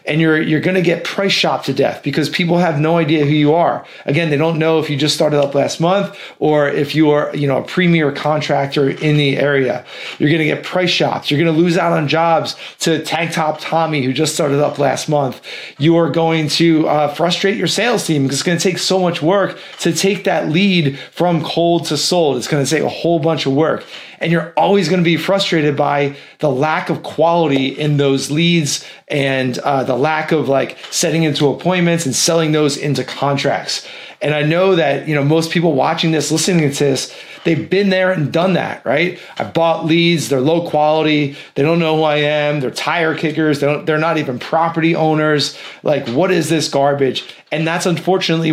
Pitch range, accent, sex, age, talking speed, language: 145-165 Hz, American, male, 30-49, 220 wpm, English